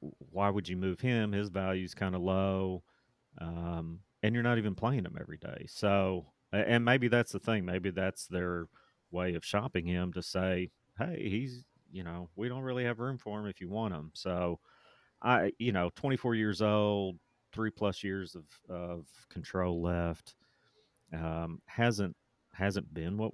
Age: 30-49